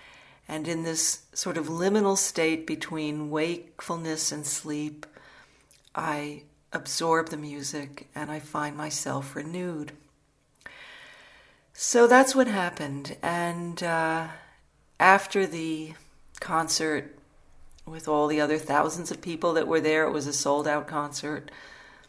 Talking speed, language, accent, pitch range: 120 wpm, English, American, 145-170 Hz